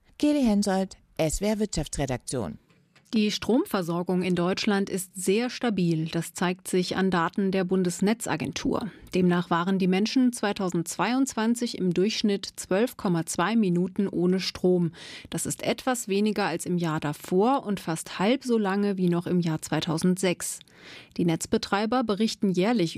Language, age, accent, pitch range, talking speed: German, 30-49, German, 175-210 Hz, 125 wpm